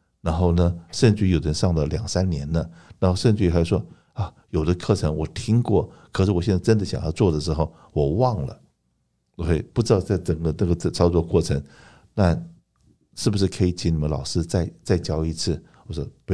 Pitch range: 80-95 Hz